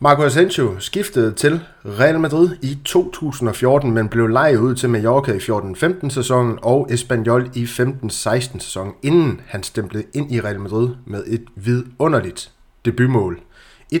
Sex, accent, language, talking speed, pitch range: male, native, Danish, 145 wpm, 115-135 Hz